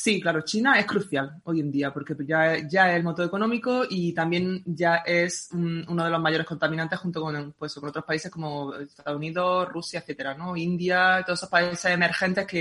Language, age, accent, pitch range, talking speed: Spanish, 20-39, Spanish, 160-185 Hz, 200 wpm